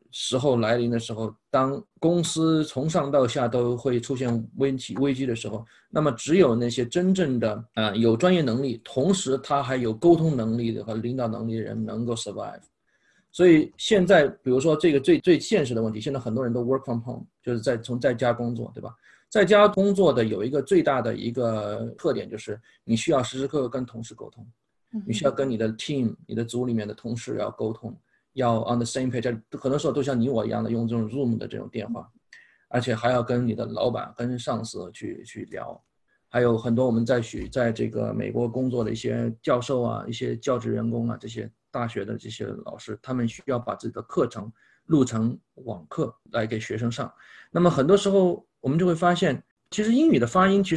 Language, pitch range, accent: Chinese, 115-145 Hz, native